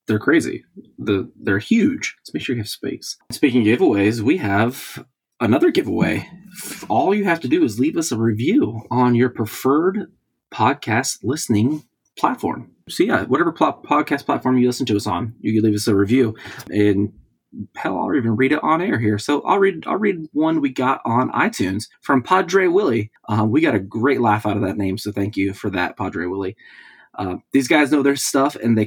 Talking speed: 200 wpm